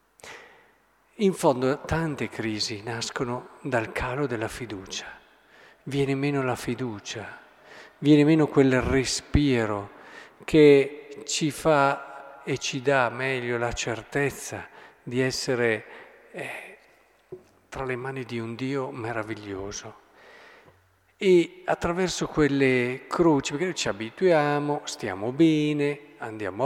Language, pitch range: Italian, 125-175 Hz